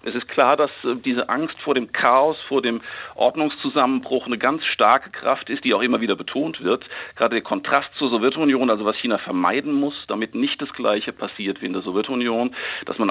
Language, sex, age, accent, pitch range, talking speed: German, male, 50-69, German, 120-150 Hz, 200 wpm